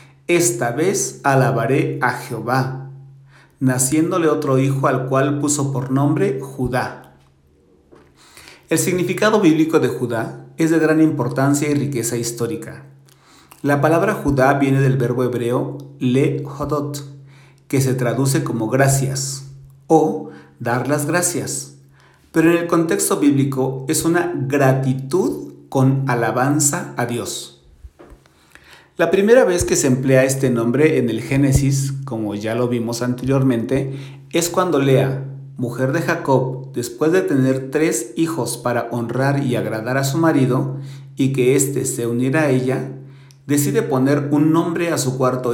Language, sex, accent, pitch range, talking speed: Spanish, male, Mexican, 125-145 Hz, 135 wpm